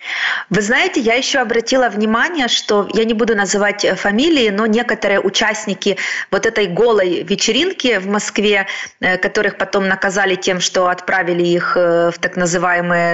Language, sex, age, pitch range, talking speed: Ukrainian, female, 30-49, 200-240 Hz, 140 wpm